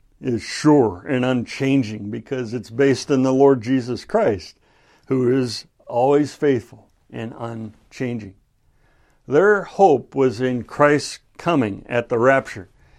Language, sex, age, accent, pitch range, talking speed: English, male, 60-79, American, 115-145 Hz, 125 wpm